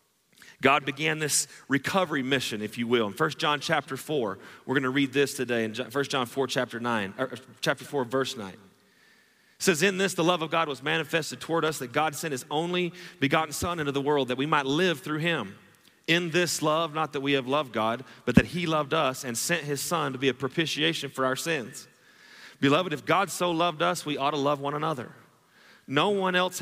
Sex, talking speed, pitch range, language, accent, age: male, 220 wpm, 135-165 Hz, English, American, 30-49